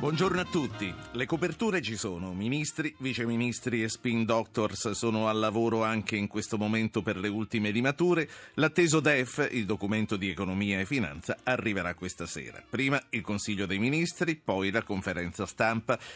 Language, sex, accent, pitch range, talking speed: Italian, male, native, 95-130 Hz, 160 wpm